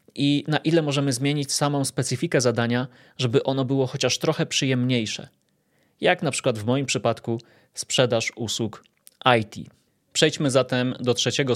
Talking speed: 140 wpm